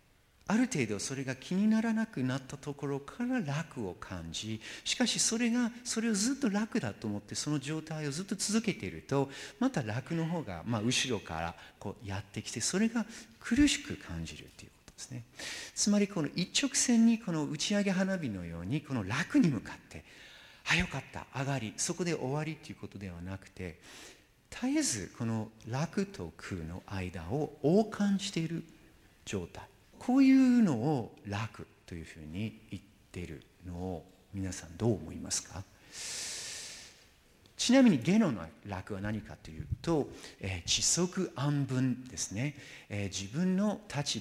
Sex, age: male, 50-69